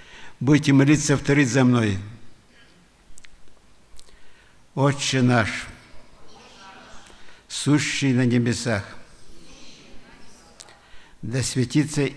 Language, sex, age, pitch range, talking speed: Russian, male, 60-79, 110-140 Hz, 60 wpm